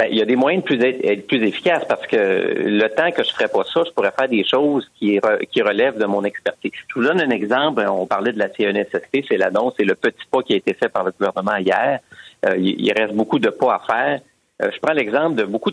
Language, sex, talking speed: French, male, 255 wpm